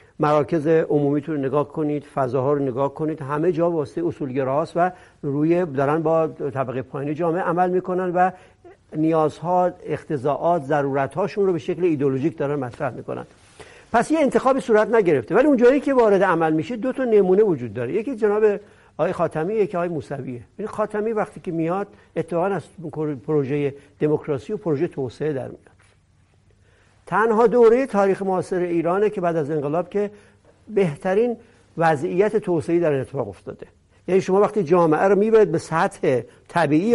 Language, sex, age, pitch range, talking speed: Persian, male, 60-79, 150-205 Hz, 155 wpm